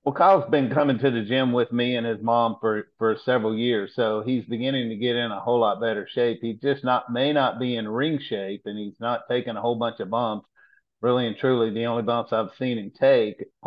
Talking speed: 240 wpm